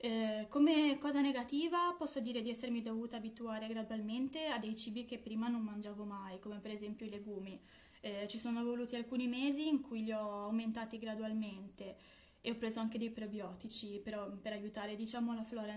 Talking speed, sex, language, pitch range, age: 180 wpm, female, Italian, 210-240 Hz, 20-39